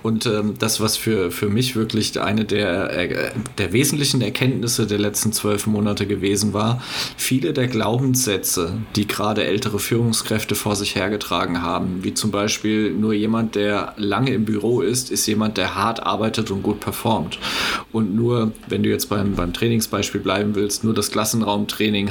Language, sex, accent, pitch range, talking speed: German, male, German, 105-120 Hz, 165 wpm